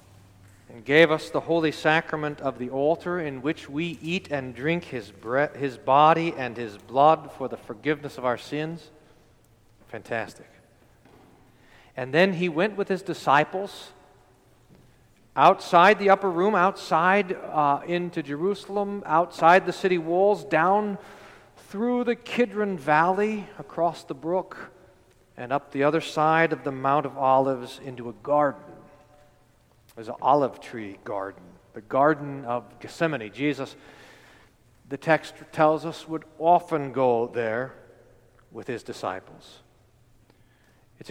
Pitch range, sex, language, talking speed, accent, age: 130-175 Hz, male, English, 135 wpm, American, 40-59